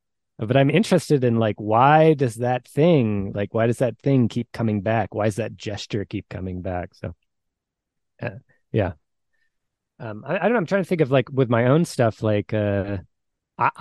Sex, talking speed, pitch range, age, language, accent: male, 190 wpm, 100-125 Hz, 20-39, English, American